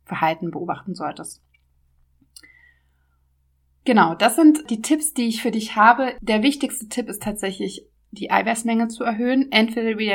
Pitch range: 185-220 Hz